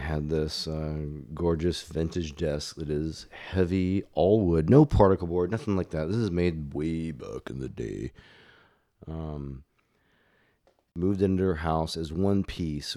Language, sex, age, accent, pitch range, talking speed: English, male, 30-49, American, 80-100 Hz, 155 wpm